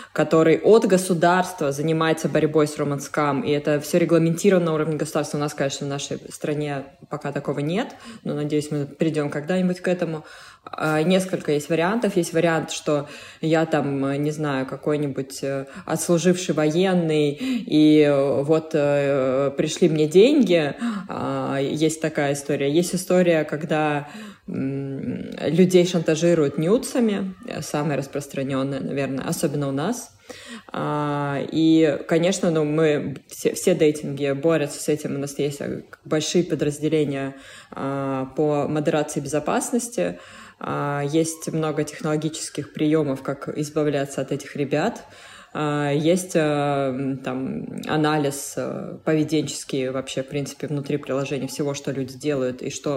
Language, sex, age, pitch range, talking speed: Russian, female, 20-39, 140-165 Hz, 120 wpm